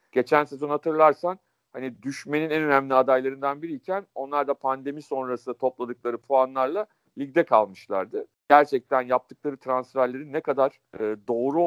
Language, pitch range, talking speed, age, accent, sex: Turkish, 125-165 Hz, 125 wpm, 50-69, native, male